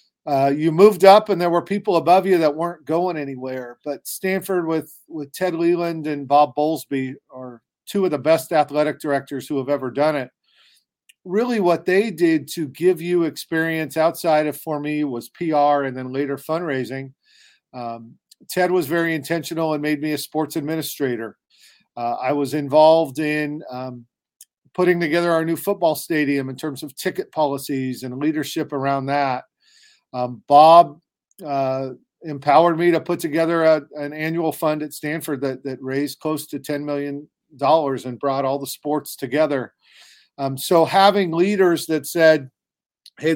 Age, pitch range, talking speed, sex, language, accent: 40-59, 140-170 Hz, 165 wpm, male, English, American